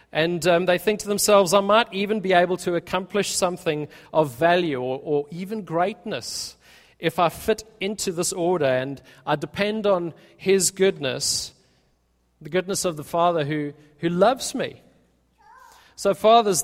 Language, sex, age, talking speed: English, male, 40-59, 155 wpm